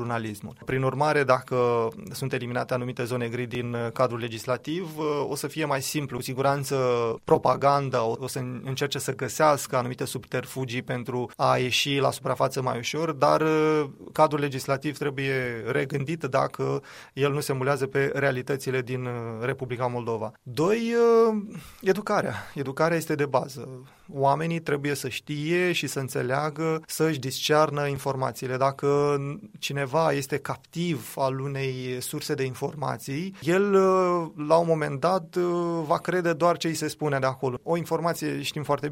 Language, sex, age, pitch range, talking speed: Romanian, male, 20-39, 130-155 Hz, 140 wpm